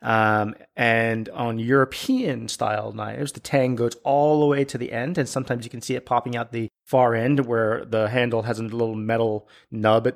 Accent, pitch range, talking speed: American, 100-120 Hz, 205 wpm